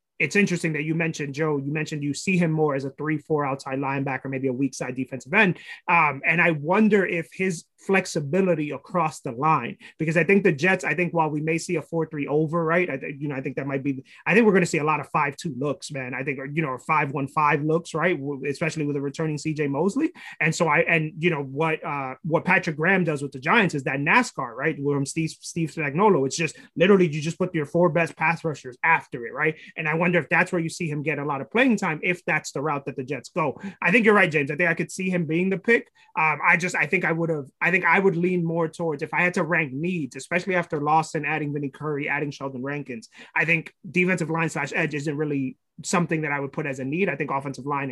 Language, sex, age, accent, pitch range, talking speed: English, male, 30-49, American, 145-180 Hz, 260 wpm